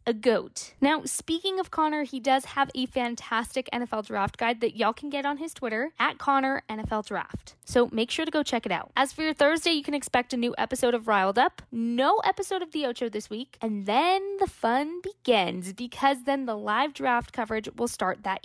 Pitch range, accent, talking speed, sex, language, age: 240-330 Hz, American, 210 wpm, female, English, 10-29